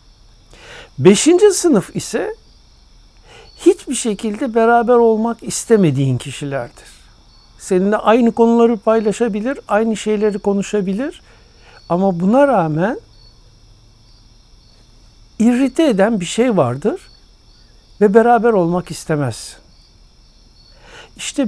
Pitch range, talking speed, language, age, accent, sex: 125-205 Hz, 80 wpm, Turkish, 60-79, native, male